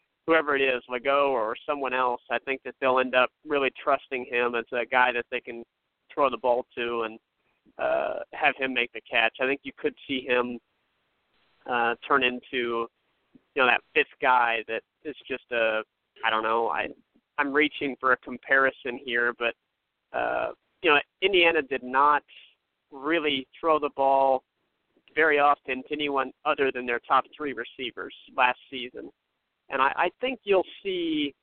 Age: 30-49